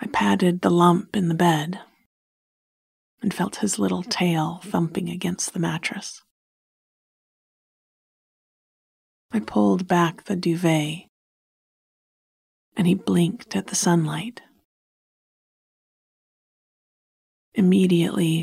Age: 40-59